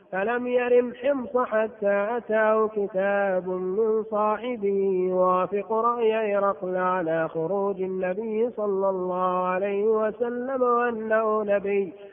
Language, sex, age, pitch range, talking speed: Arabic, male, 30-49, 195-240 Hz, 100 wpm